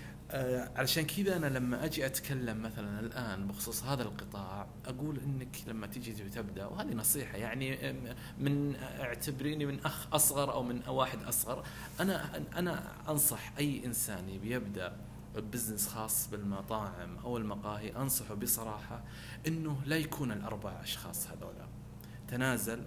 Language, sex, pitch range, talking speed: Arabic, male, 105-140 Hz, 125 wpm